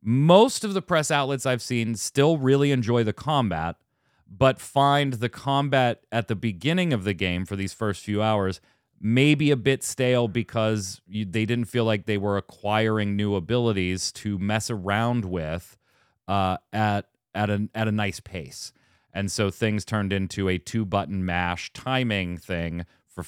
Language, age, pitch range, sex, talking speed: English, 30-49, 95-130 Hz, male, 170 wpm